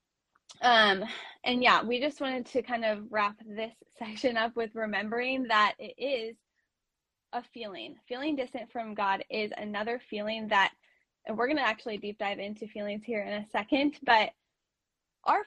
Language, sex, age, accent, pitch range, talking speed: English, female, 10-29, American, 210-245 Hz, 165 wpm